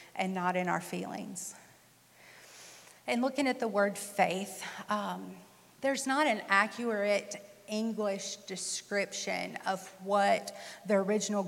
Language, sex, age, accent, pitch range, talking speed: English, female, 40-59, American, 190-225 Hz, 115 wpm